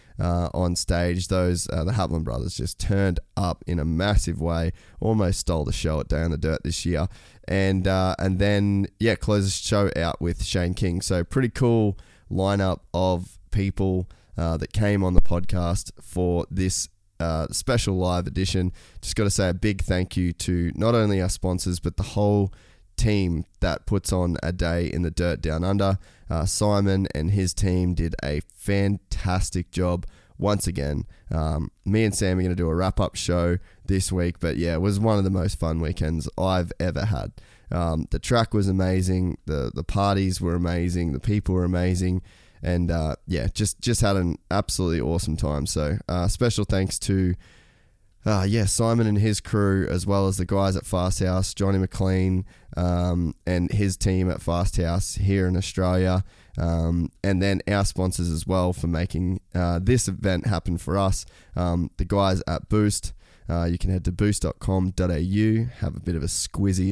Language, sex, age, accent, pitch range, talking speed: English, male, 10-29, Australian, 85-100 Hz, 185 wpm